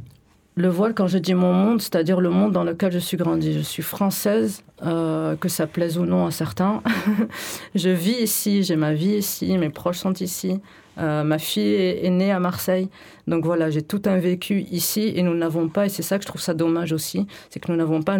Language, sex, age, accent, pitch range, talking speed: French, female, 40-59, French, 155-185 Hz, 230 wpm